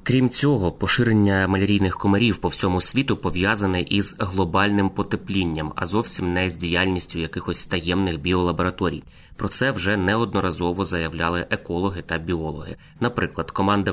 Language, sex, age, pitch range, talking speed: Ukrainian, male, 20-39, 90-100 Hz, 130 wpm